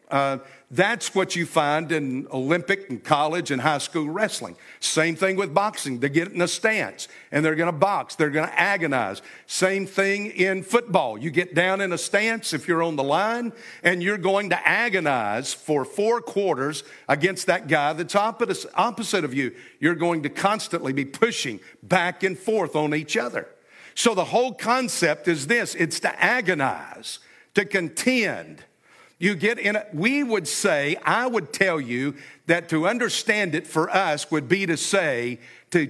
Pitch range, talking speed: 155-210 Hz, 175 wpm